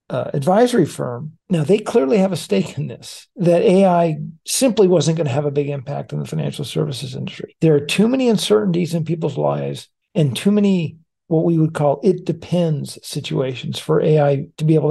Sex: male